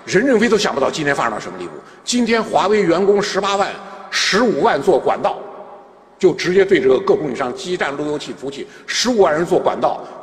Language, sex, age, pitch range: Chinese, male, 60-79, 190-235 Hz